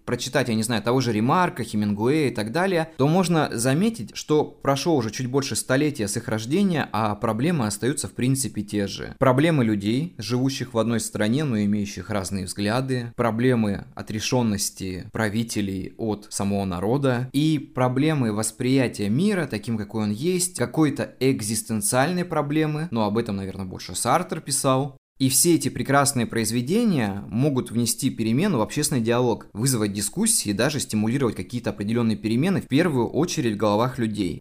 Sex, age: male, 20-39